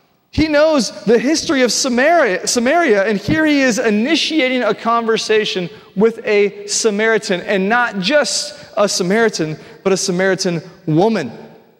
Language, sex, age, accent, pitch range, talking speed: English, male, 30-49, American, 185-240 Hz, 130 wpm